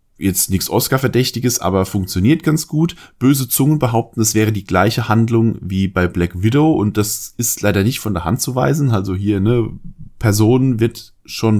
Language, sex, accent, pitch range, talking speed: German, male, German, 95-120 Hz, 185 wpm